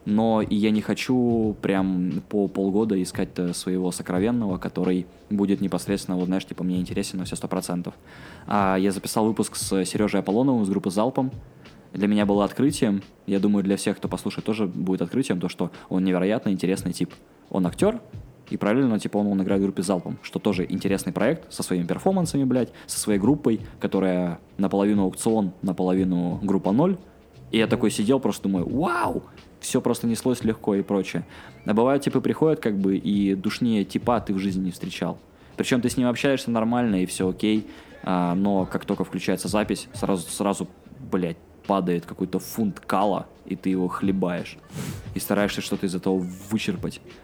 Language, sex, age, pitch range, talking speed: Russian, male, 20-39, 95-105 Hz, 175 wpm